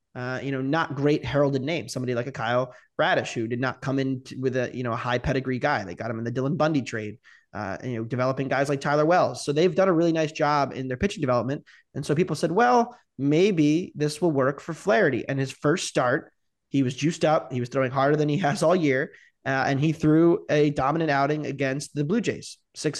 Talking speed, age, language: 240 wpm, 20-39, English